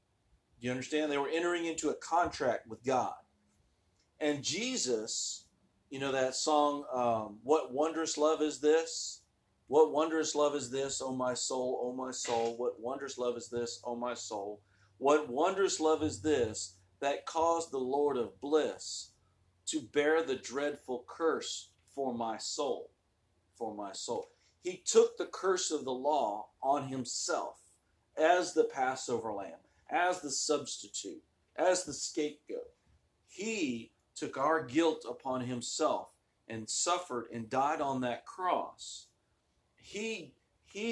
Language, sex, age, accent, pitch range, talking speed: English, male, 40-59, American, 120-170 Hz, 145 wpm